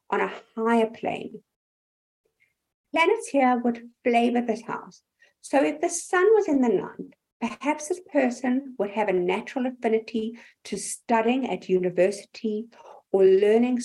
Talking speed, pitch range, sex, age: 140 wpm, 210-275 Hz, female, 60-79